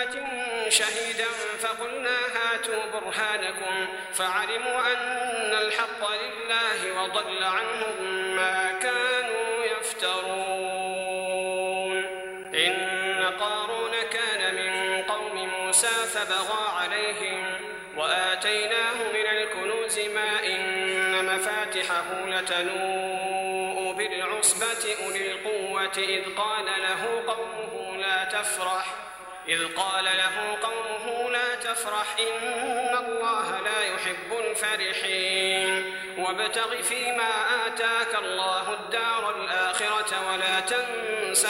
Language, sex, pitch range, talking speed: Arabic, male, 190-225 Hz, 80 wpm